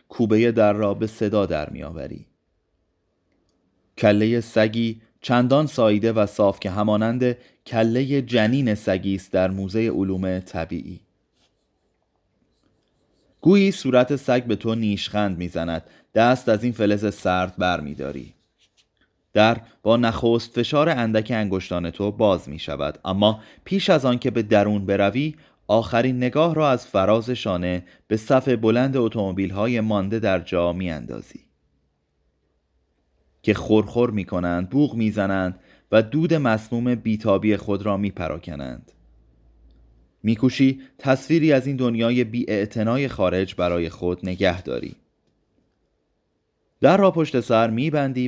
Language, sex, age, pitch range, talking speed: Persian, male, 30-49, 90-120 Hz, 125 wpm